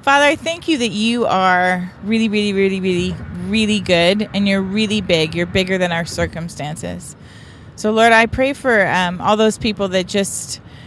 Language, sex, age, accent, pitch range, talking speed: English, female, 30-49, American, 160-190 Hz, 180 wpm